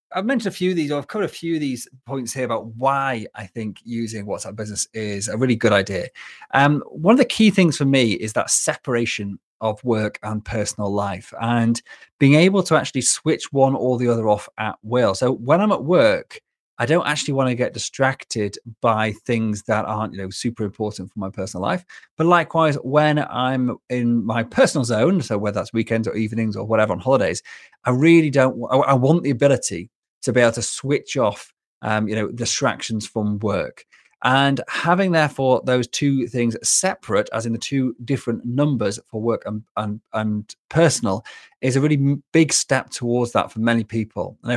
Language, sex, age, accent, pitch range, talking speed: English, male, 30-49, British, 110-140 Hz, 200 wpm